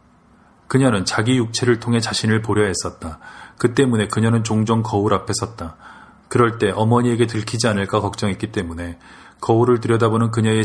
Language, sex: Korean, male